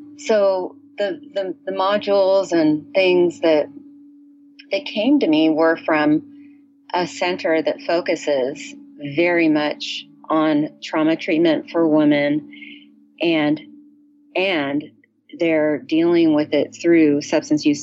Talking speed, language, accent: 115 wpm, English, American